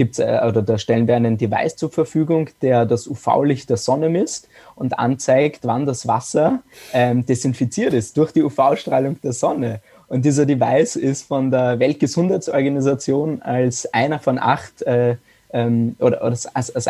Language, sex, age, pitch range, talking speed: German, male, 20-39, 115-135 Hz, 155 wpm